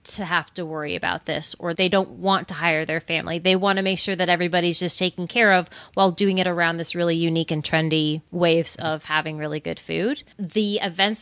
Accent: American